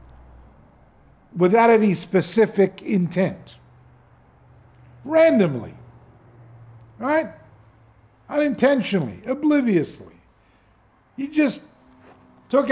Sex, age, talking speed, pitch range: male, 50-69, 50 wpm, 145-220 Hz